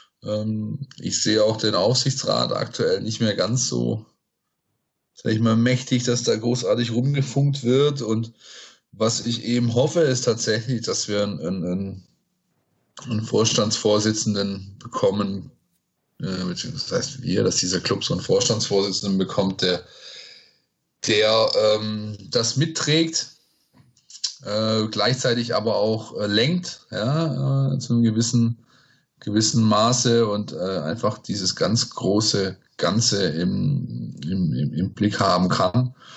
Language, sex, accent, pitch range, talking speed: German, male, German, 105-125 Hz, 120 wpm